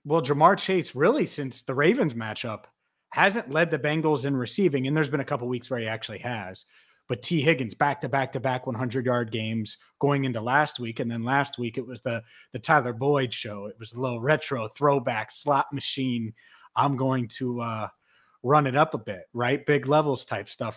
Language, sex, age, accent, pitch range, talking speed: English, male, 30-49, American, 120-160 Hz, 210 wpm